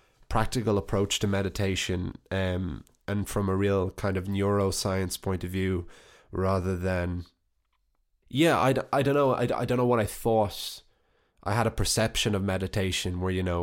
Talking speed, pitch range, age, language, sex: 175 wpm, 90-105 Hz, 20-39, English, male